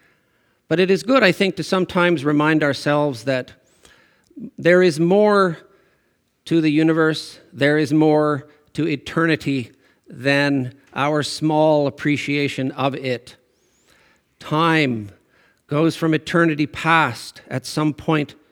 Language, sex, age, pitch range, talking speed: English, male, 50-69, 135-170 Hz, 115 wpm